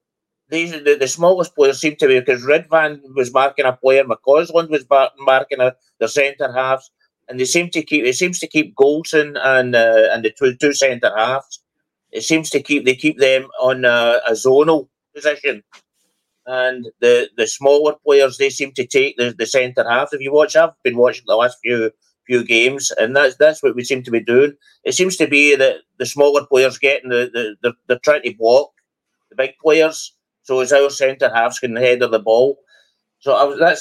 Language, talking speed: English, 210 wpm